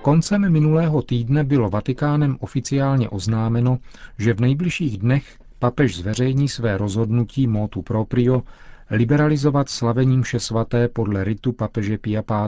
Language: Czech